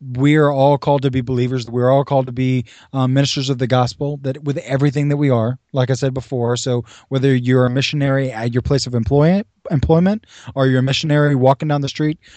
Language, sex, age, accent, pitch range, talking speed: English, male, 20-39, American, 130-150 Hz, 225 wpm